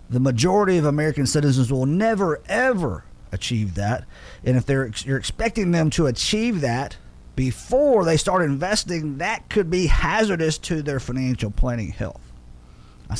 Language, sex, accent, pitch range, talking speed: English, male, American, 105-170 Hz, 155 wpm